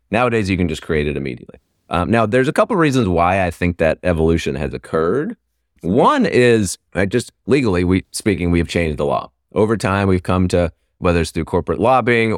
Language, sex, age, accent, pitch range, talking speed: English, male, 30-49, American, 80-105 Hz, 210 wpm